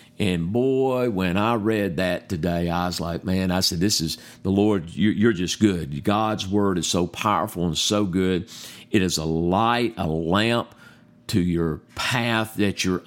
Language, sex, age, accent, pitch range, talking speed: English, male, 50-69, American, 100-120 Hz, 180 wpm